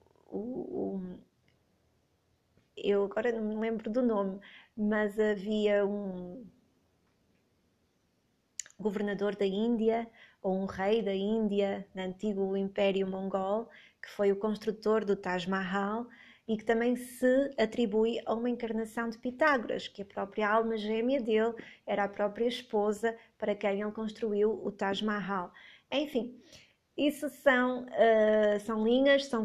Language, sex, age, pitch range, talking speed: Portuguese, female, 20-39, 205-240 Hz, 125 wpm